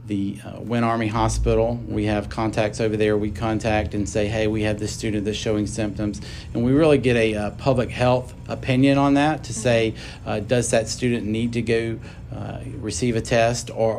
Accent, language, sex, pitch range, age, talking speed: American, English, male, 105-120 Hz, 40-59, 200 wpm